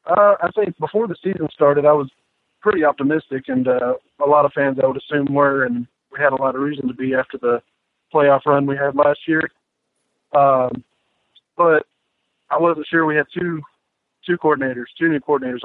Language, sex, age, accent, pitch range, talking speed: English, male, 50-69, American, 130-150 Hz, 195 wpm